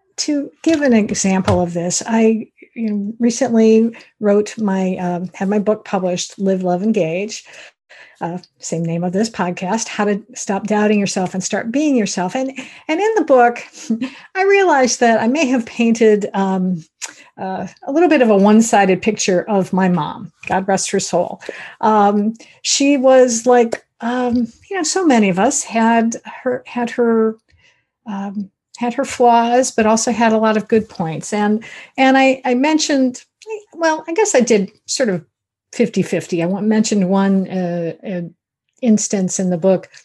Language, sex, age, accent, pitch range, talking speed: English, female, 50-69, American, 185-245 Hz, 170 wpm